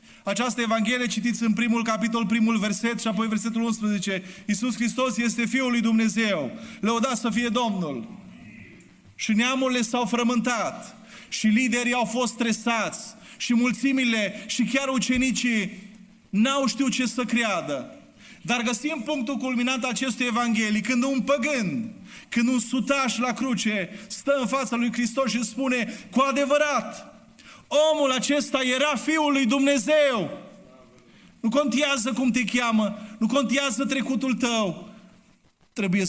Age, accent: 30-49, native